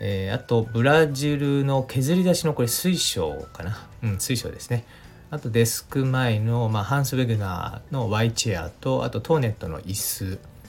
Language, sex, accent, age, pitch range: Japanese, male, native, 40-59, 100-125 Hz